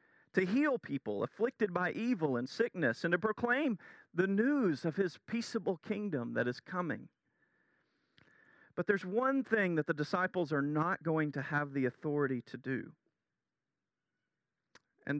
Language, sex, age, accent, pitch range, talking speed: English, male, 40-59, American, 135-190 Hz, 145 wpm